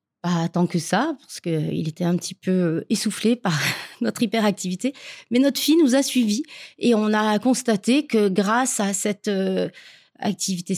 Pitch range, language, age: 180-220 Hz, French, 30-49